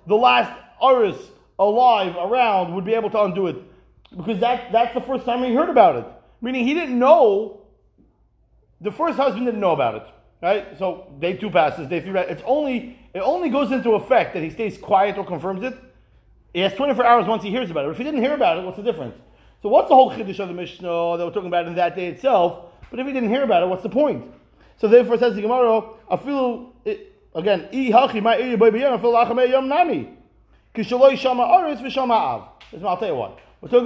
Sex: male